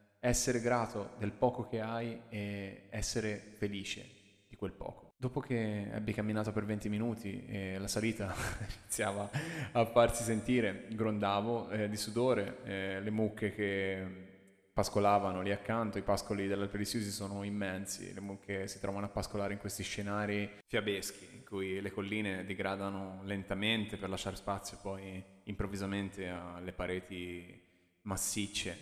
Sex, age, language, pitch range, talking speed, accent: male, 20-39, Italian, 100-110 Hz, 140 wpm, native